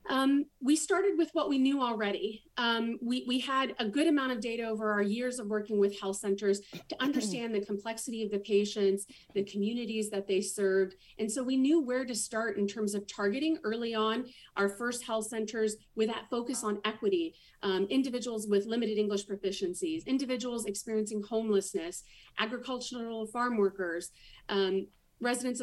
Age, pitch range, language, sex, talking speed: 40-59, 200-250 Hz, English, female, 170 wpm